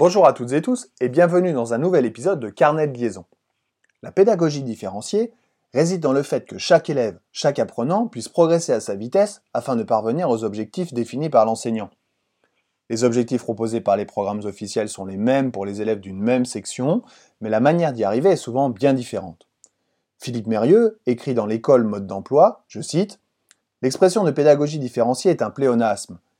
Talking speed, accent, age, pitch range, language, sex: 185 wpm, French, 30-49, 110-155 Hz, French, male